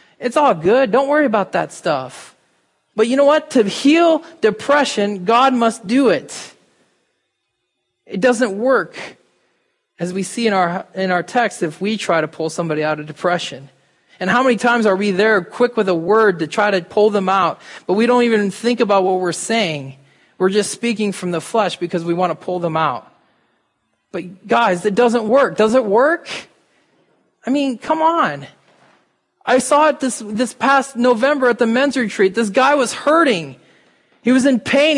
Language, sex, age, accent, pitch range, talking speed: English, male, 20-39, American, 200-270 Hz, 190 wpm